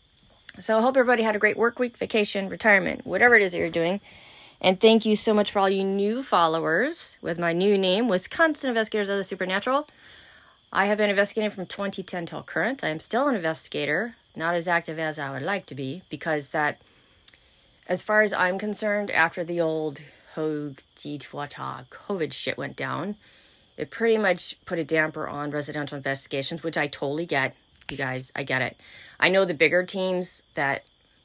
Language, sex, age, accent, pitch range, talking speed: English, female, 30-49, American, 145-195 Hz, 190 wpm